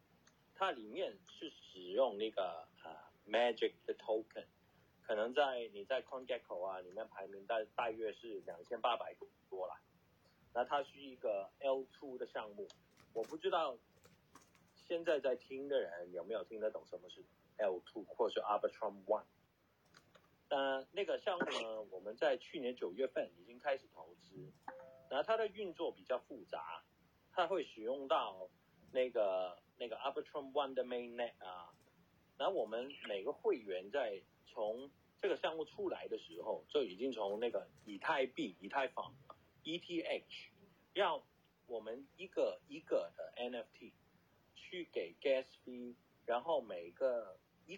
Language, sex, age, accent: Chinese, male, 30-49, native